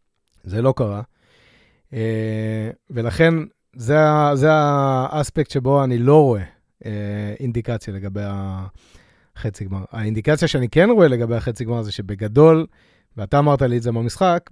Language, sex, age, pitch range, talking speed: Hebrew, male, 30-49, 110-140 Hz, 125 wpm